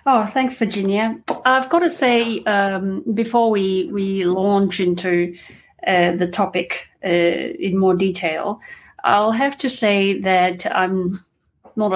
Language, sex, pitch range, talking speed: English, female, 180-220 Hz, 135 wpm